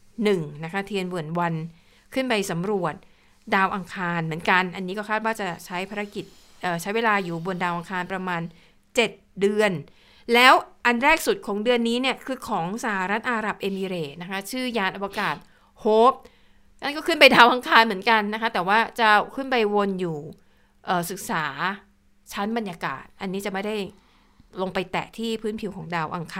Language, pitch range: Thai, 185-235 Hz